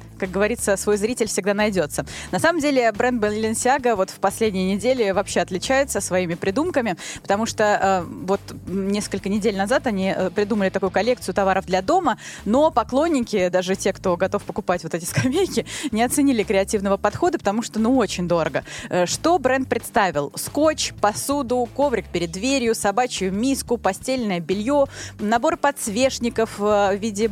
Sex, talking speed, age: female, 150 wpm, 20-39